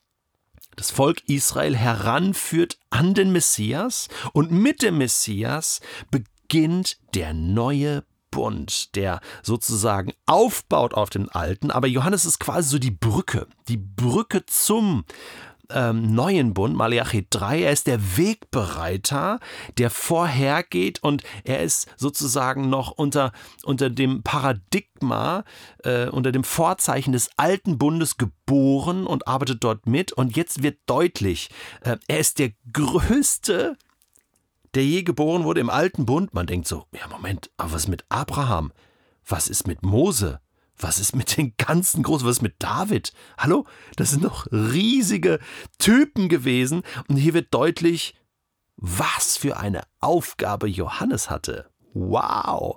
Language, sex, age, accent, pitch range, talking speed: German, male, 40-59, German, 110-165 Hz, 140 wpm